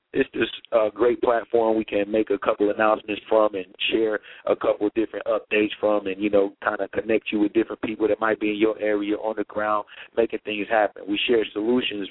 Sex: male